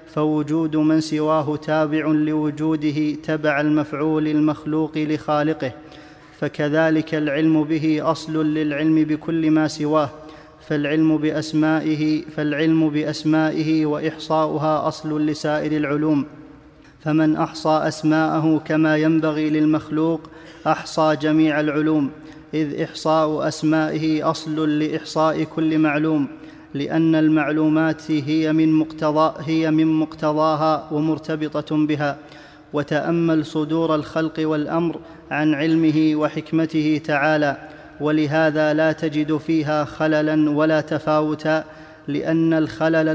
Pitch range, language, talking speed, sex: 150-160 Hz, Arabic, 95 wpm, male